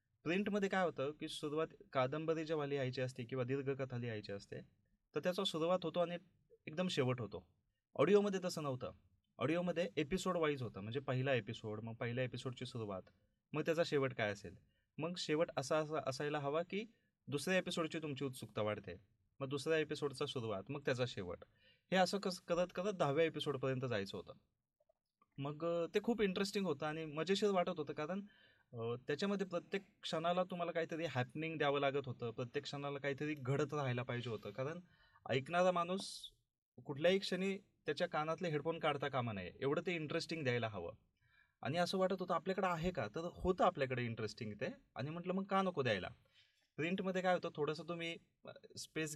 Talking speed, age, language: 150 wpm, 30-49, Marathi